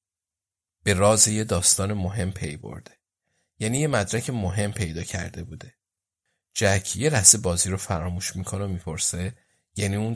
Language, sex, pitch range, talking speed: Persian, male, 90-115 Hz, 150 wpm